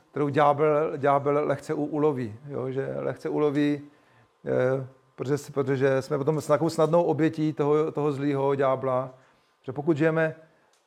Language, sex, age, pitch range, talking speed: Czech, male, 40-59, 140-160 Hz, 120 wpm